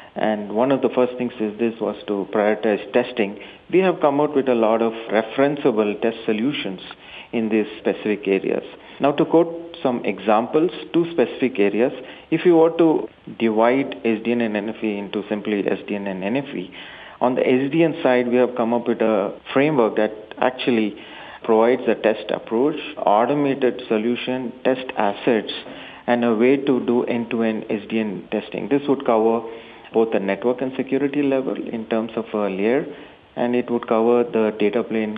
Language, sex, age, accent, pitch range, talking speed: English, male, 40-59, Indian, 110-135 Hz, 165 wpm